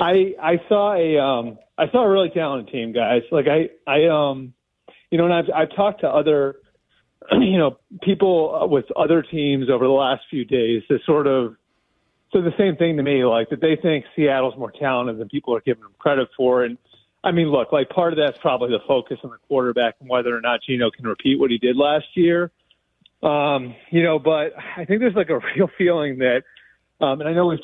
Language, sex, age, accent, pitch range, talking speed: English, male, 30-49, American, 125-160 Hz, 220 wpm